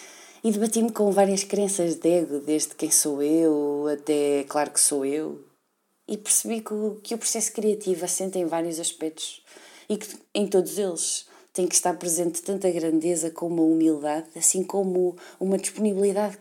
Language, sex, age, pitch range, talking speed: Portuguese, female, 20-39, 160-190 Hz, 170 wpm